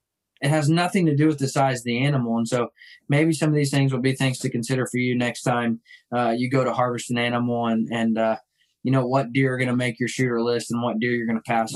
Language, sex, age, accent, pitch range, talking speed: English, male, 20-39, American, 115-135 Hz, 270 wpm